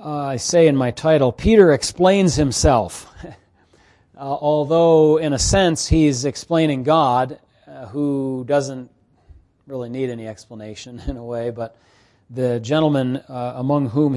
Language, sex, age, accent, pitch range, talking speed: English, male, 40-59, American, 120-155 Hz, 140 wpm